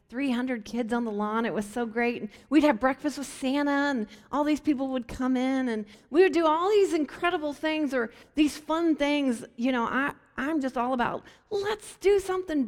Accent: American